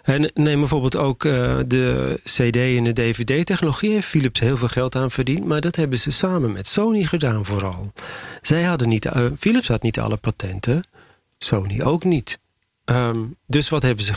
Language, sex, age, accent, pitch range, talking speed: Dutch, male, 40-59, Dutch, 110-150 Hz, 180 wpm